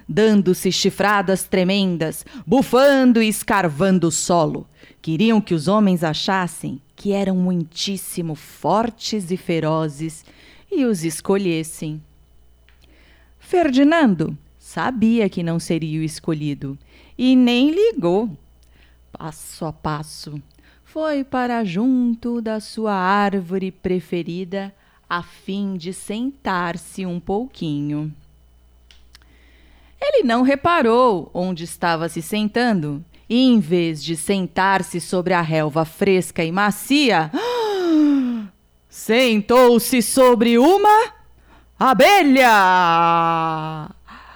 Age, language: 30-49, Portuguese